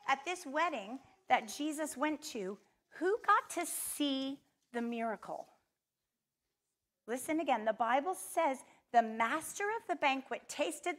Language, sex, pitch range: English, female, 220-305 Hz